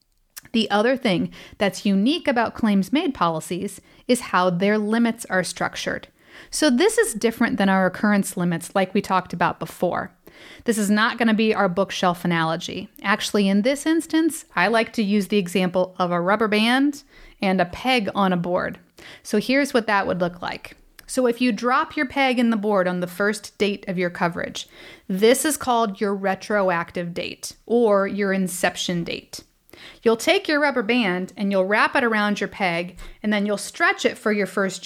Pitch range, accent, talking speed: 185-245 Hz, American, 190 wpm